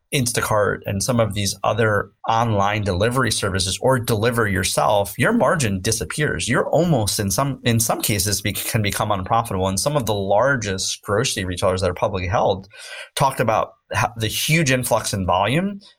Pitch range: 100-120 Hz